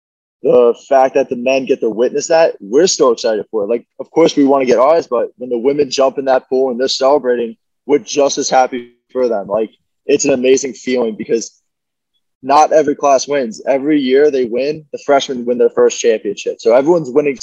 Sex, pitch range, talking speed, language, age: male, 125-155 Hz, 215 wpm, English, 20-39